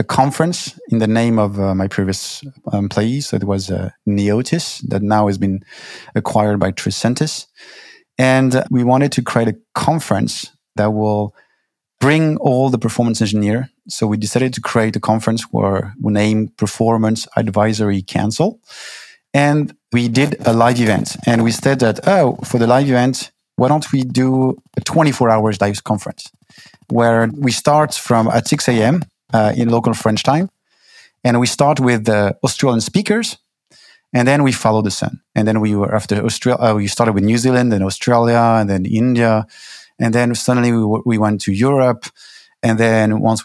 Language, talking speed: English, 175 wpm